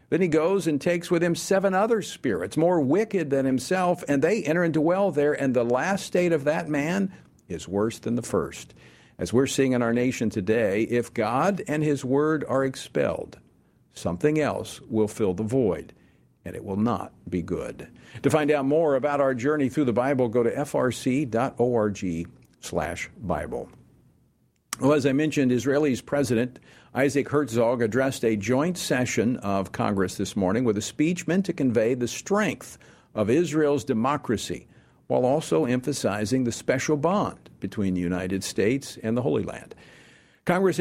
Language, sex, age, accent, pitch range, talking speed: English, male, 50-69, American, 115-155 Hz, 170 wpm